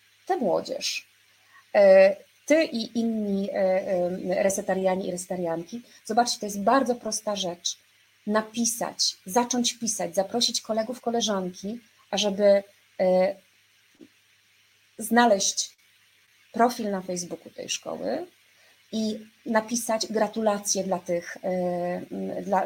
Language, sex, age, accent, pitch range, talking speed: Polish, female, 30-49, native, 190-250 Hz, 85 wpm